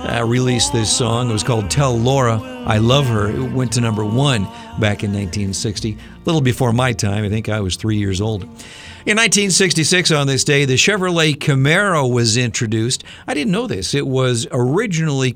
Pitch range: 115-145 Hz